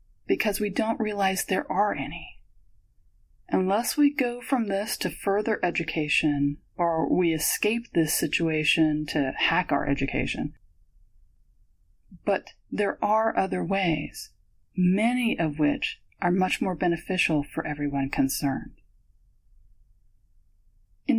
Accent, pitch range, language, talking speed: American, 140-195 Hz, English, 115 wpm